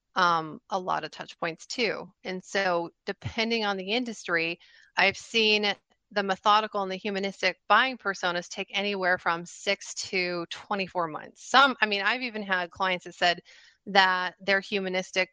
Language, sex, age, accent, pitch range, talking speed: English, female, 30-49, American, 185-215 Hz, 160 wpm